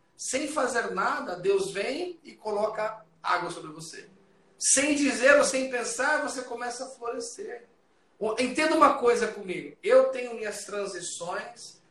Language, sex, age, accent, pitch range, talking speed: Portuguese, male, 40-59, Brazilian, 195-270 Hz, 135 wpm